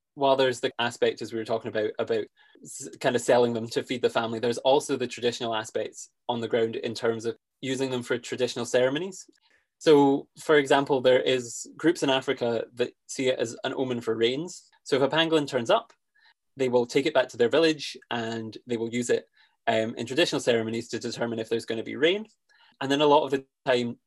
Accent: British